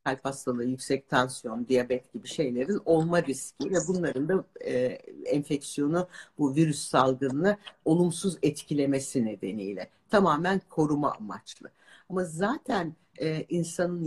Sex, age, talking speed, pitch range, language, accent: female, 60-79, 115 wpm, 145-190 Hz, Turkish, native